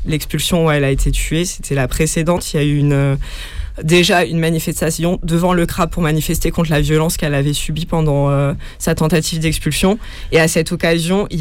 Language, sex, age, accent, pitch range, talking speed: French, female, 20-39, French, 145-170 Hz, 200 wpm